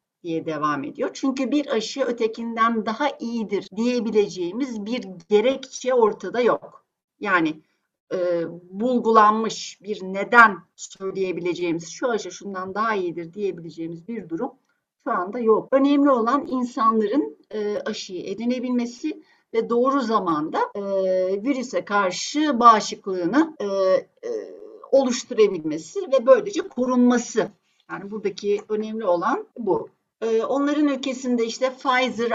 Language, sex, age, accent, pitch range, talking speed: Turkish, female, 60-79, native, 200-265 Hz, 110 wpm